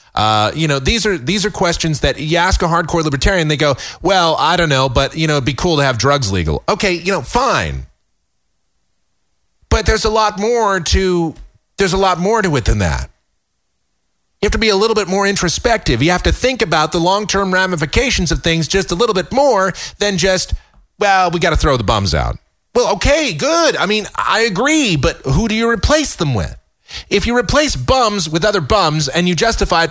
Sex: male